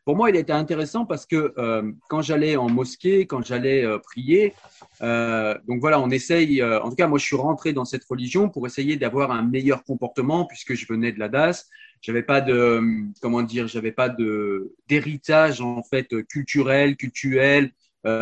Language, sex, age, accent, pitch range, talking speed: French, male, 40-59, French, 120-150 Hz, 195 wpm